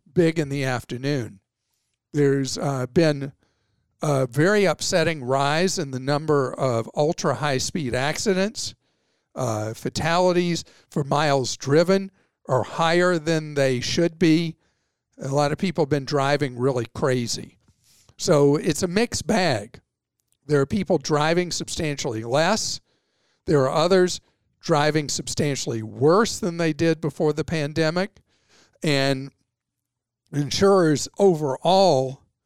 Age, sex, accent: 50-69, male, American